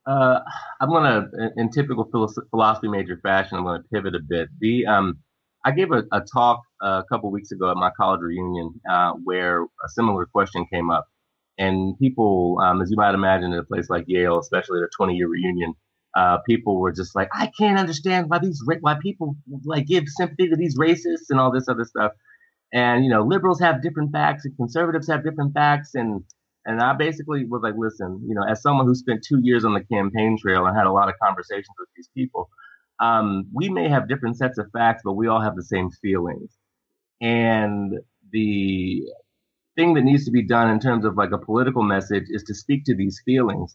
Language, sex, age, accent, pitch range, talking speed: English, male, 30-49, American, 95-130 Hz, 210 wpm